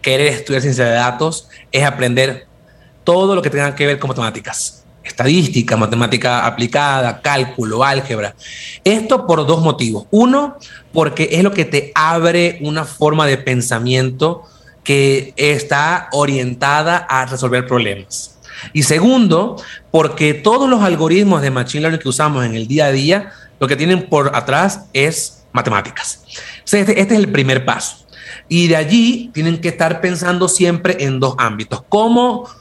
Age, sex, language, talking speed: 30-49, male, Spanish, 150 wpm